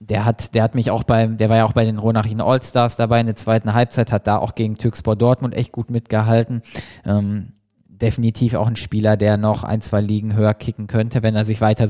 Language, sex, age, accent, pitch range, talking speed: German, male, 20-39, German, 110-125 Hz, 230 wpm